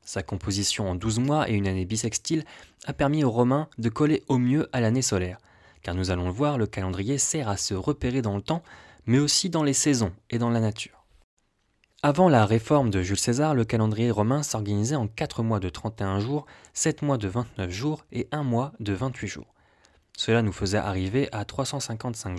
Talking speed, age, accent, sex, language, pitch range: 205 wpm, 20-39, French, male, French, 100-130 Hz